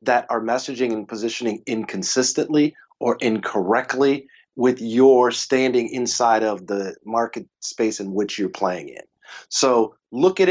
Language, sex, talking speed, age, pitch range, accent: English, male, 135 wpm, 30-49, 110-140 Hz, American